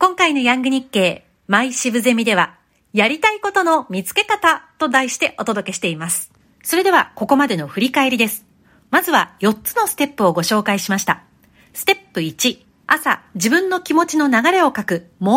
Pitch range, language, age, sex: 200-310 Hz, Japanese, 40-59, female